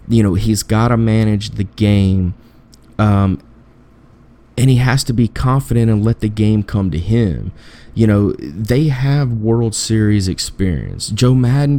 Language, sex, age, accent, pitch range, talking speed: English, male, 30-49, American, 100-125 Hz, 160 wpm